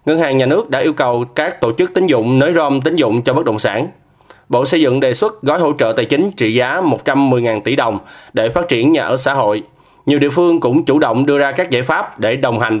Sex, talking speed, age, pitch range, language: male, 265 wpm, 20-39, 120-150 Hz, Vietnamese